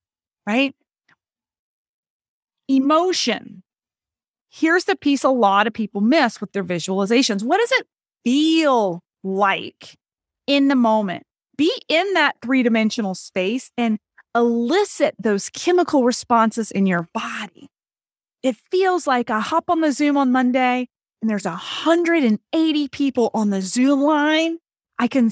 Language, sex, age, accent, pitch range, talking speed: English, female, 30-49, American, 220-305 Hz, 130 wpm